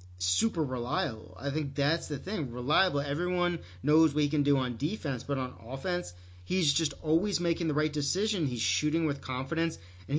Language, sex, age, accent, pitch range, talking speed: English, male, 40-59, American, 125-160 Hz, 185 wpm